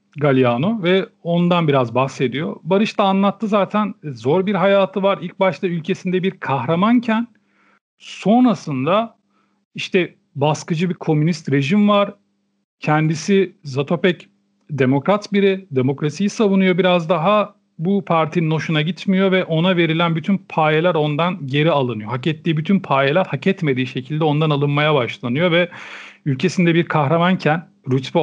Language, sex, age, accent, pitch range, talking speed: Turkish, male, 40-59, native, 135-190 Hz, 130 wpm